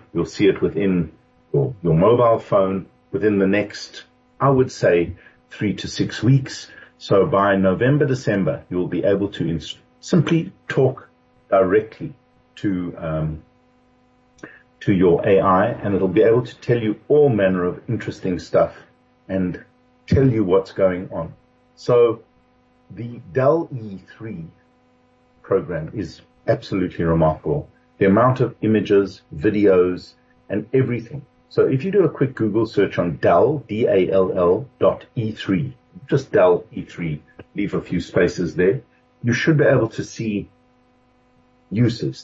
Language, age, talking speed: English, 50-69, 135 wpm